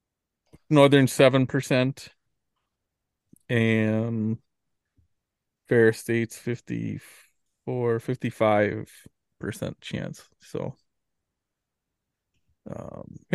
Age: 20-39